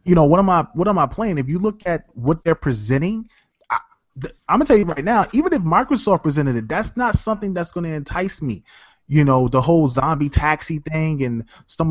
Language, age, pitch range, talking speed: English, 20-39, 130-160 Hz, 235 wpm